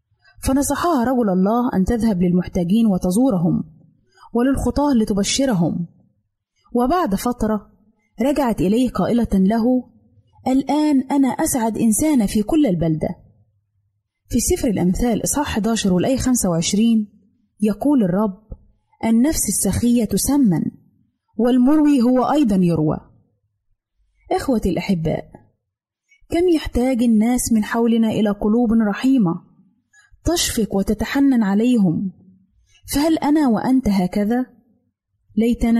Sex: female